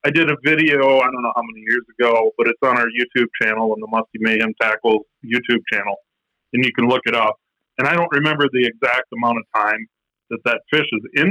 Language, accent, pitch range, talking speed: English, American, 120-155 Hz, 235 wpm